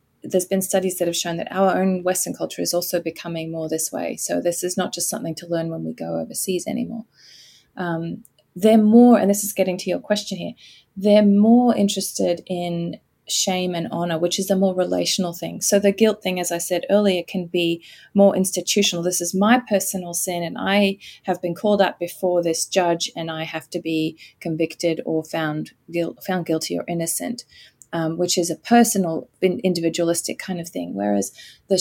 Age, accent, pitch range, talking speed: 20-39, Australian, 170-200 Hz, 195 wpm